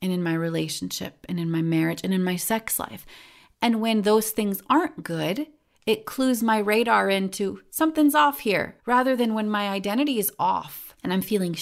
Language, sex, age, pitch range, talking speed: English, female, 30-49, 175-230 Hz, 190 wpm